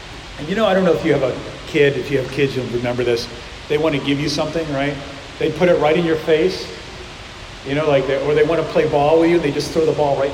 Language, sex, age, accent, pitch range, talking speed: English, male, 40-59, American, 125-155 Hz, 295 wpm